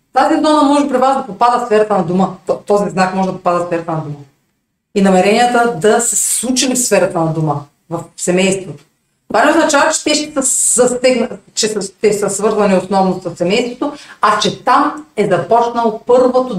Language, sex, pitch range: Bulgarian, female, 185-260 Hz